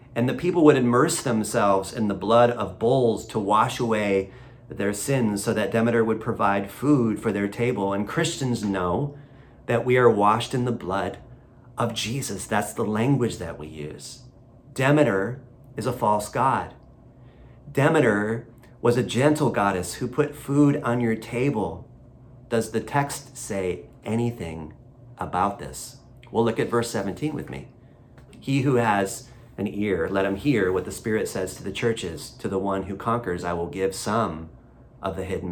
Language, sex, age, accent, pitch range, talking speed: English, male, 40-59, American, 100-125 Hz, 170 wpm